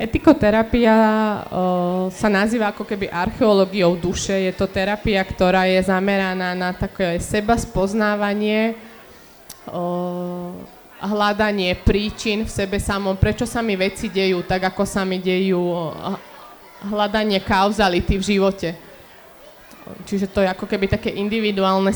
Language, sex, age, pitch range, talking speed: Slovak, female, 20-39, 185-215 Hz, 125 wpm